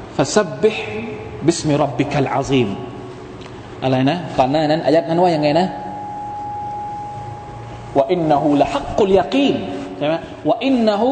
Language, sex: Thai, male